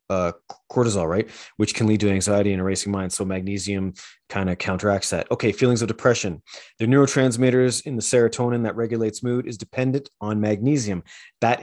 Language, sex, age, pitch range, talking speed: English, male, 30-49, 100-115 Hz, 175 wpm